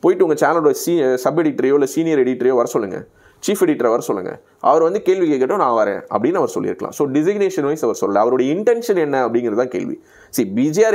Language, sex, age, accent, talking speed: Tamil, male, 30-49, native, 195 wpm